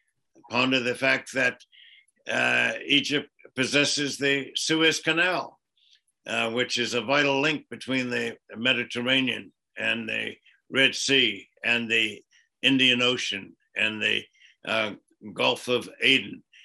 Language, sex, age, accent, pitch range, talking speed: English, male, 60-79, American, 120-135 Hz, 120 wpm